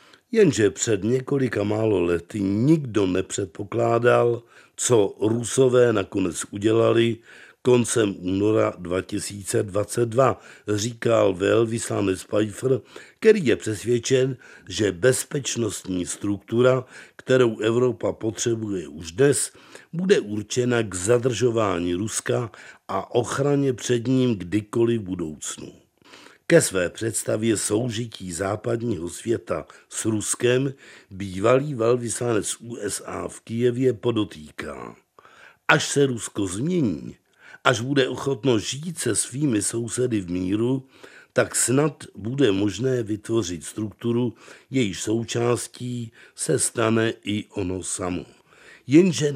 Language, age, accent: Czech, 50-69, native